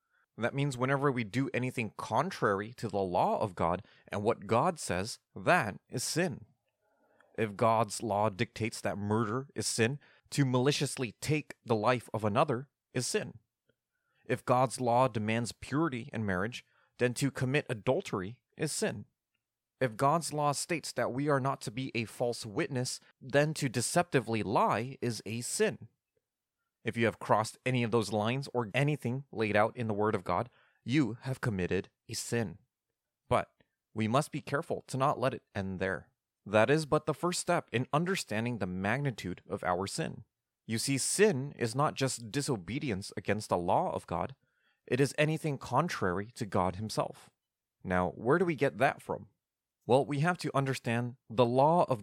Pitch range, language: 110-140 Hz, English